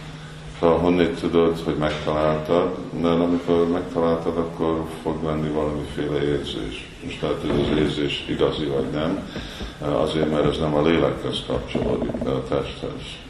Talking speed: 140 wpm